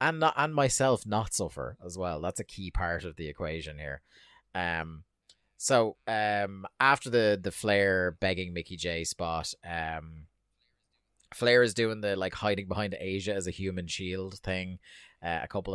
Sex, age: male, 30-49